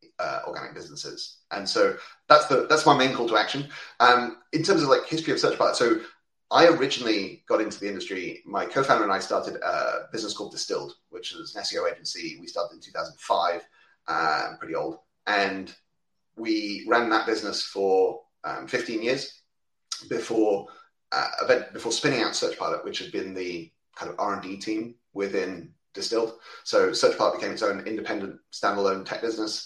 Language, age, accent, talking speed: English, 30-49, British, 175 wpm